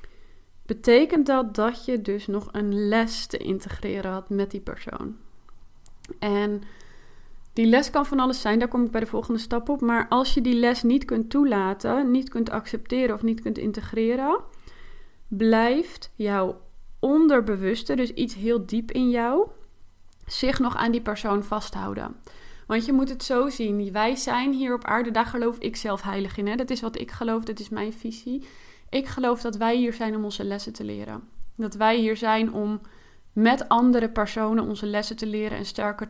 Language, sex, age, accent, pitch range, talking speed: Dutch, female, 30-49, Dutch, 205-245 Hz, 185 wpm